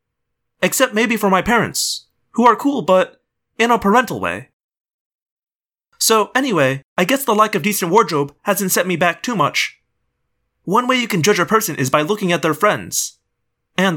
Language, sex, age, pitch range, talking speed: English, male, 30-49, 150-220 Hz, 180 wpm